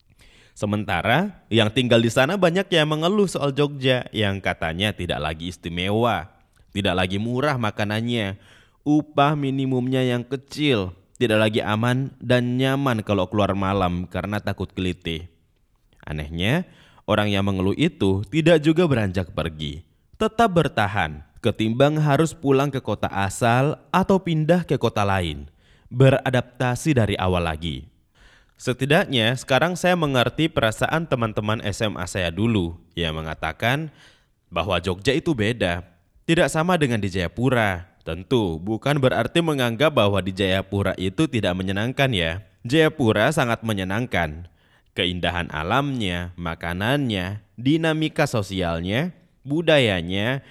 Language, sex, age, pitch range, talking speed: Indonesian, male, 20-39, 95-135 Hz, 120 wpm